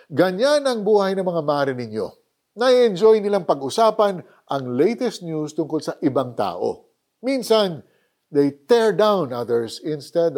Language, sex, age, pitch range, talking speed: Filipino, male, 50-69, 135-195 Hz, 140 wpm